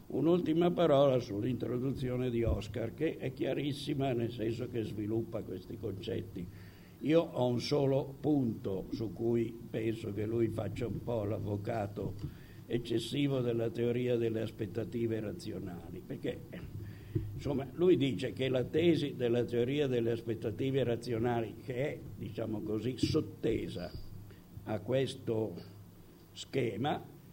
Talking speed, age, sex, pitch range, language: 120 wpm, 60-79, male, 105-130 Hz, Italian